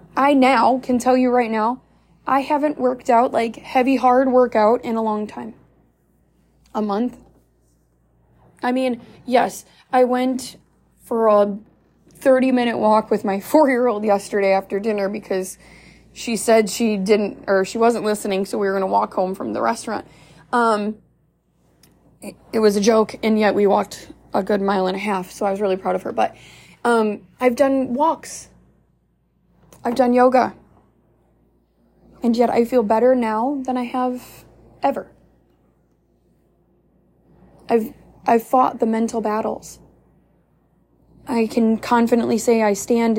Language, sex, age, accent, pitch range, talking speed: English, female, 20-39, American, 205-255 Hz, 150 wpm